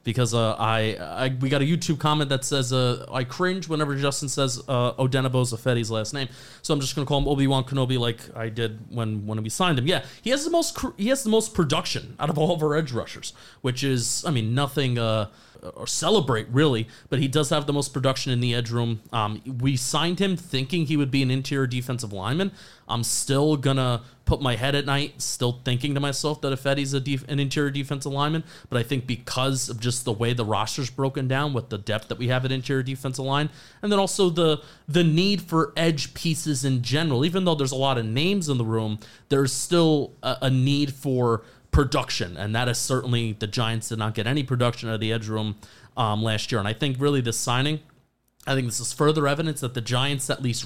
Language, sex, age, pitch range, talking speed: English, male, 30-49, 120-145 Hz, 230 wpm